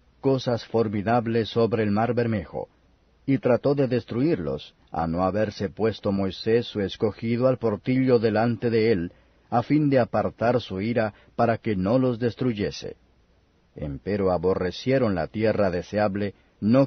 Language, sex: Spanish, male